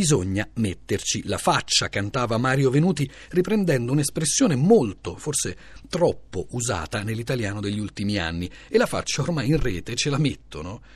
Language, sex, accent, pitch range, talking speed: Italian, male, native, 105-170 Hz, 140 wpm